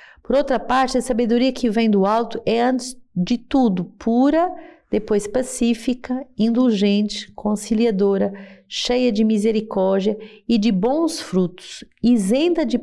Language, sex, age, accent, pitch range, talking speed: Portuguese, female, 40-59, Brazilian, 205-265 Hz, 125 wpm